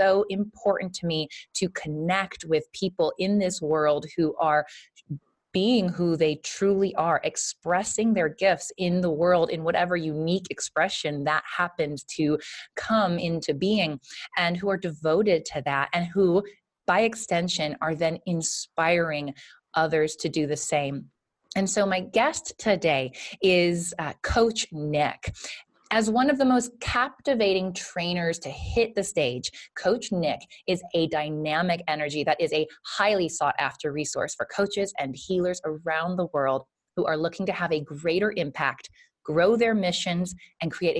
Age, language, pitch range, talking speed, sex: 20-39, English, 155-195 Hz, 155 wpm, female